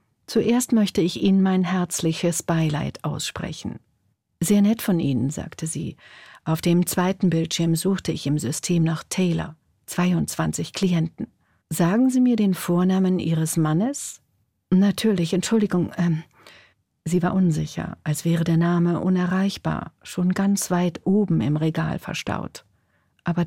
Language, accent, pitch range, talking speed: German, German, 160-185 Hz, 130 wpm